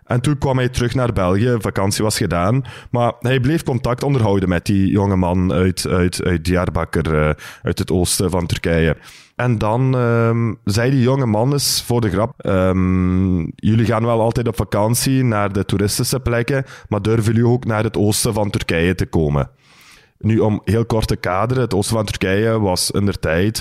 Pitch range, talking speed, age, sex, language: 90-115 Hz, 185 wpm, 20-39, male, Dutch